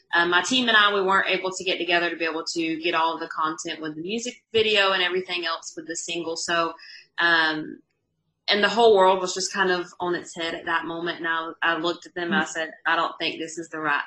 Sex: female